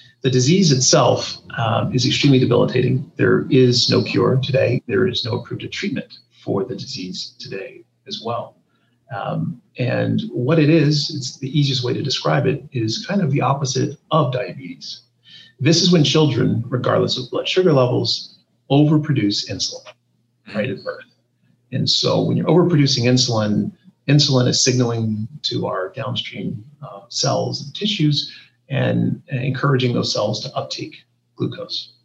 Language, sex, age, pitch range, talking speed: English, male, 40-59, 120-150 Hz, 150 wpm